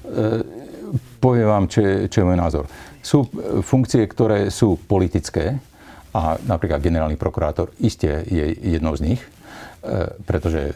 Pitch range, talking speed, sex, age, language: 85-110 Hz, 125 wpm, male, 50-69, Slovak